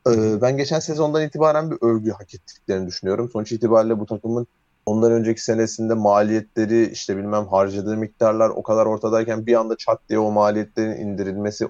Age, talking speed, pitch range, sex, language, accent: 30-49, 160 wpm, 105-125 Hz, male, Turkish, native